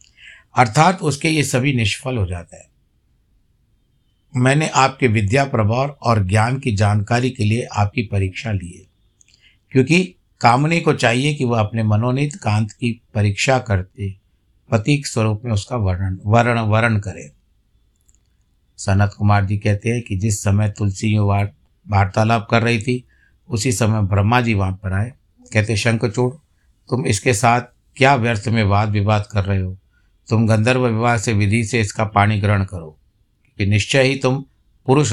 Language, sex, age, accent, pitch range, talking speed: Hindi, male, 60-79, native, 100-125 Hz, 155 wpm